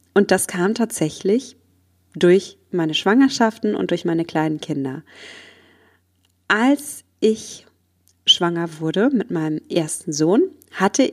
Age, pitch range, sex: 30-49, 175-220 Hz, female